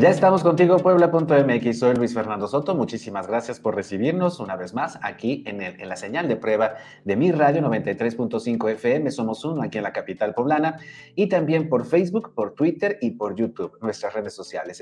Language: Spanish